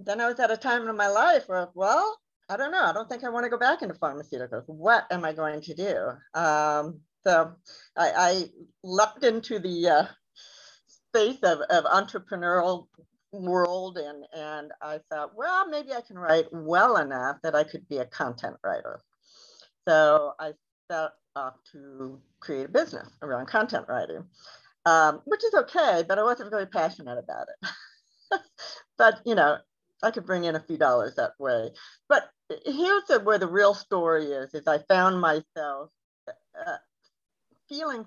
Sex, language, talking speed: female, English, 175 wpm